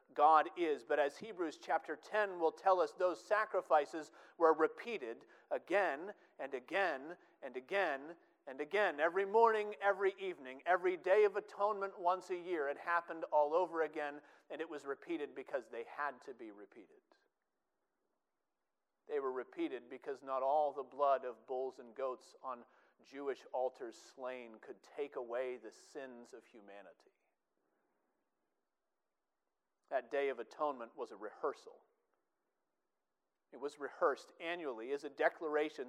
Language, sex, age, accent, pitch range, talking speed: English, male, 40-59, American, 135-220 Hz, 140 wpm